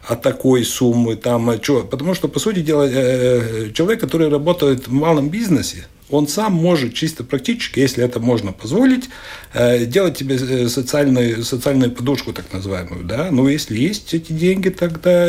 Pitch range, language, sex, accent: 115-150 Hz, Russian, male, native